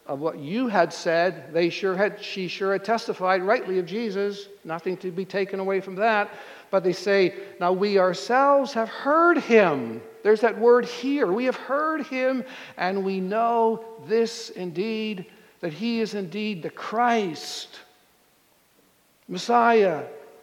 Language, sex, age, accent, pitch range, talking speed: English, male, 60-79, American, 150-215 Hz, 150 wpm